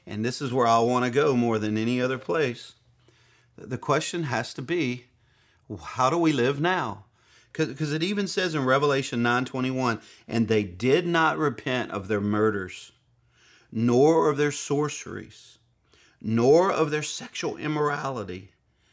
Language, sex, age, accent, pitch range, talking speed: English, male, 50-69, American, 110-145 Hz, 150 wpm